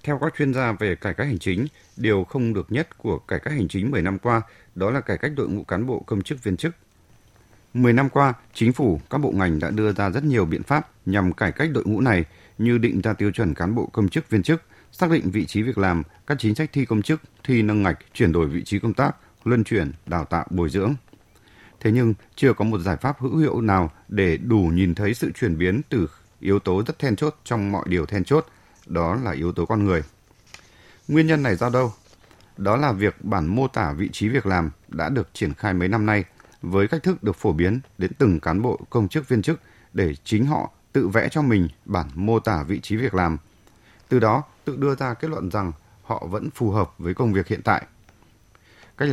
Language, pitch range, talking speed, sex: Vietnamese, 95-125 Hz, 235 wpm, male